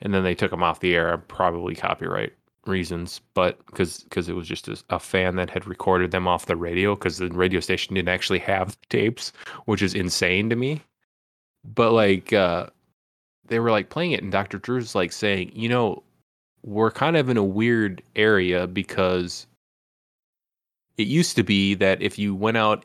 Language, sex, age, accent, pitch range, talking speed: English, male, 20-39, American, 90-105 Hz, 190 wpm